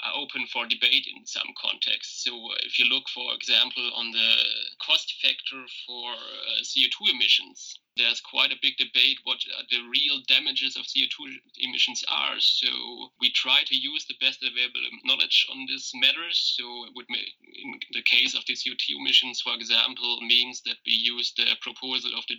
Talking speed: 170 wpm